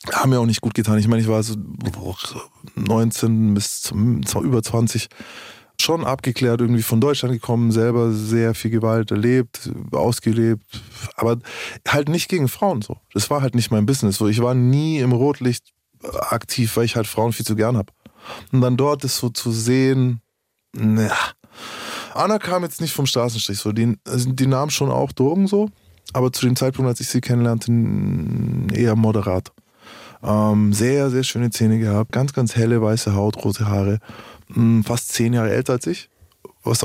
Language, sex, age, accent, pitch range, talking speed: German, male, 20-39, German, 110-130 Hz, 165 wpm